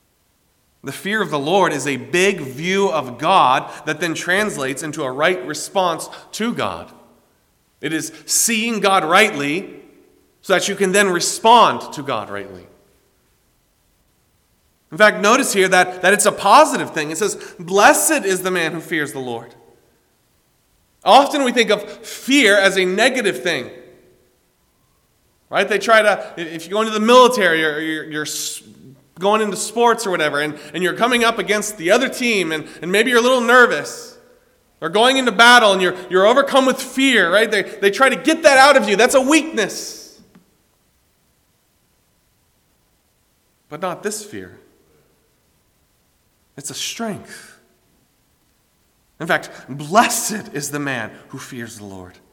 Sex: male